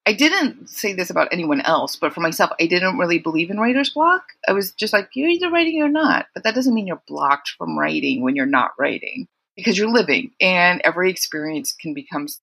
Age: 30-49